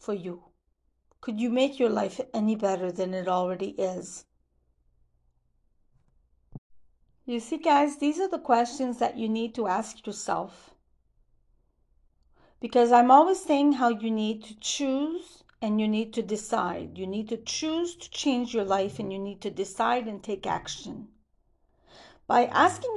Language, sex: English, female